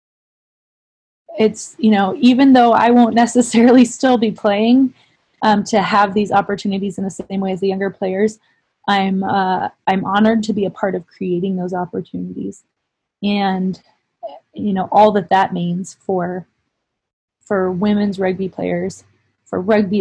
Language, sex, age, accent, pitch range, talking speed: English, female, 20-39, American, 195-230 Hz, 150 wpm